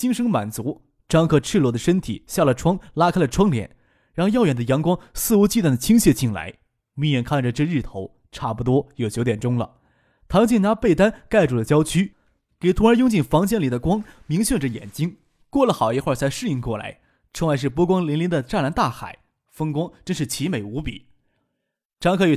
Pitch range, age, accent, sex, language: 130-195 Hz, 20-39, native, male, Chinese